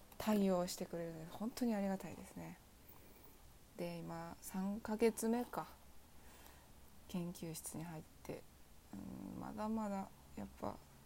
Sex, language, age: female, Japanese, 20-39